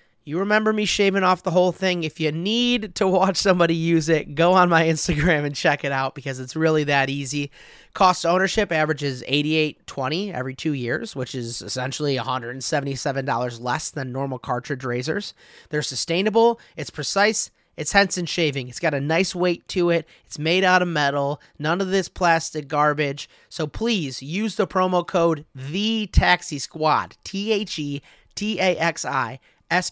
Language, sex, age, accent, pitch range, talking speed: English, male, 30-49, American, 140-180 Hz, 155 wpm